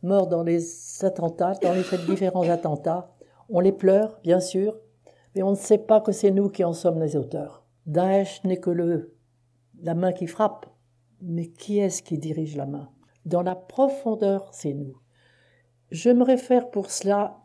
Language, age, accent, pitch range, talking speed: French, 60-79, French, 145-205 Hz, 180 wpm